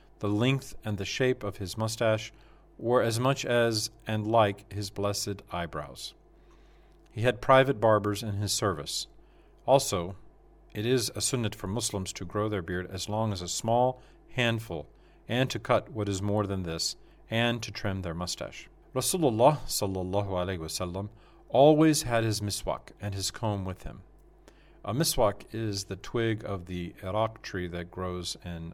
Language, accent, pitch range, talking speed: English, American, 100-115 Hz, 165 wpm